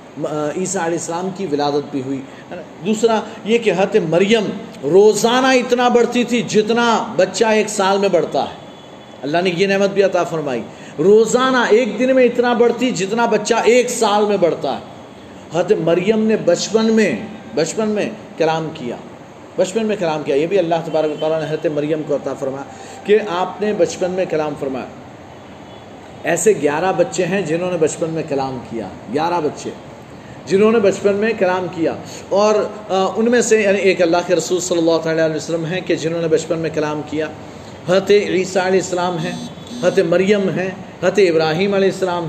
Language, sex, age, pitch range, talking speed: Urdu, male, 40-59, 160-210 Hz, 175 wpm